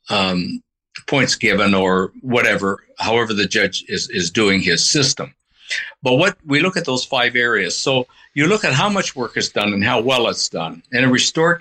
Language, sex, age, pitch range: English, male, 60-79, 115-145 Hz